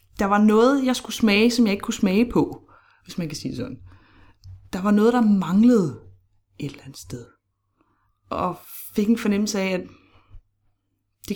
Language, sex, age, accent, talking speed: Danish, female, 30-49, native, 180 wpm